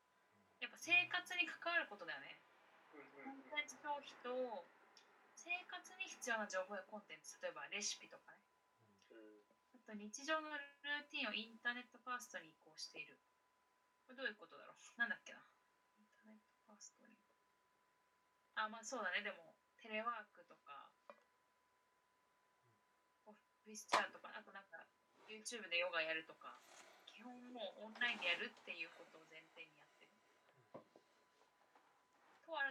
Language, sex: Japanese, female